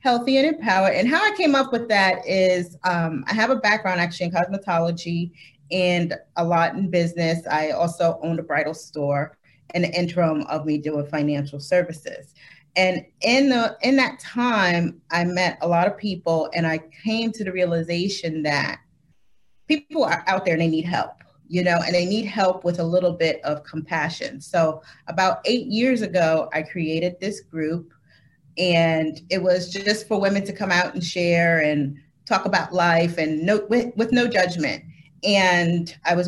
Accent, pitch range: American, 165-210 Hz